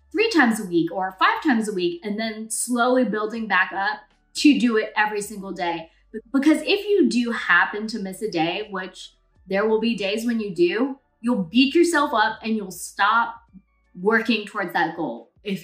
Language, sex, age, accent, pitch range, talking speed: English, female, 20-39, American, 185-250 Hz, 190 wpm